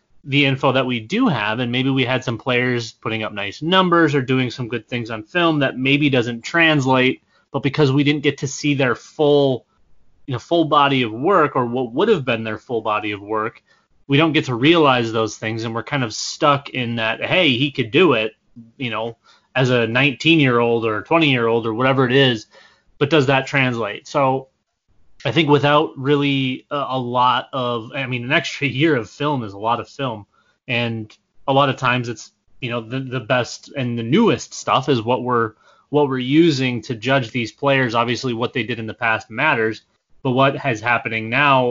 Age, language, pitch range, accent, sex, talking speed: 30-49, English, 115-140 Hz, American, male, 215 wpm